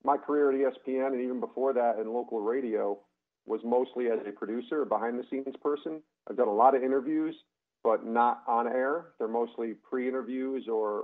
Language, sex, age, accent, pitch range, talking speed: English, male, 40-59, American, 110-135 Hz, 180 wpm